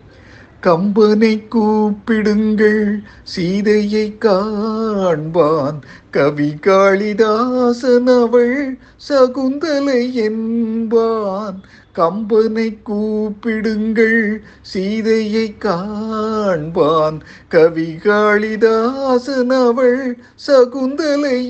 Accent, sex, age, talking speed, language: native, male, 50-69, 35 wpm, Tamil